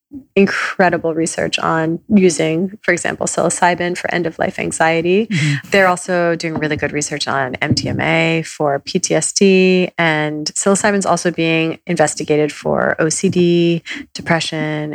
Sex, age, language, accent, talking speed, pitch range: female, 30-49, English, American, 125 wpm, 155-185 Hz